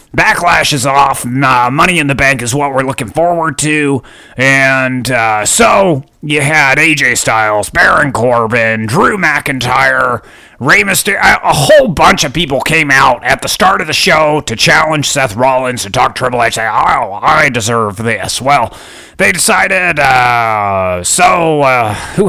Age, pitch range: 30-49, 120-150 Hz